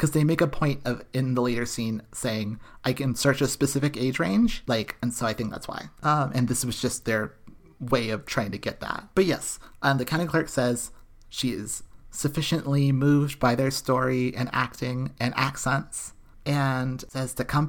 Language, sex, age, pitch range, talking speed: English, male, 30-49, 120-150 Hz, 200 wpm